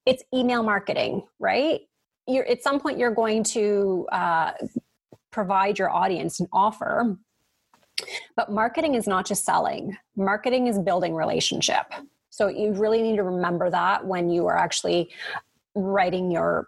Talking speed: 145 wpm